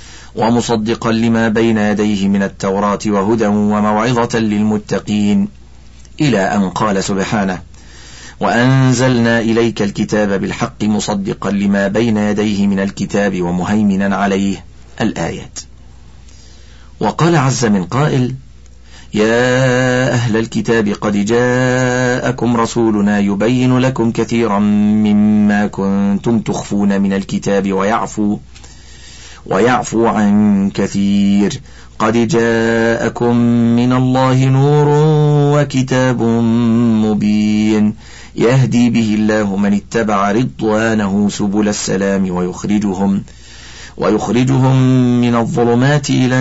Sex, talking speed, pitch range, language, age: male, 90 wpm, 100-120 Hz, Arabic, 40-59